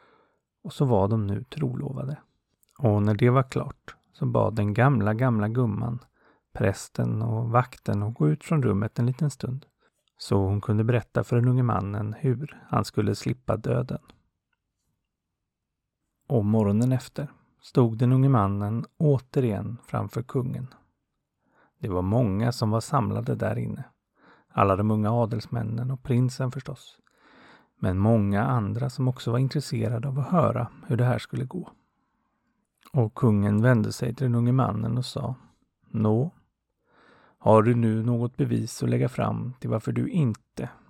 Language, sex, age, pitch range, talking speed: Swedish, male, 30-49, 110-130 Hz, 155 wpm